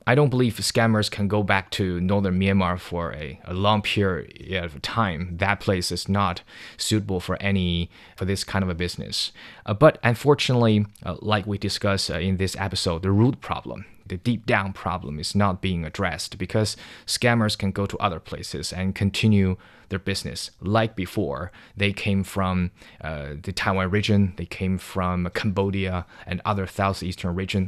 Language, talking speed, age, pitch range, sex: English, 175 wpm, 20-39, 95-110 Hz, male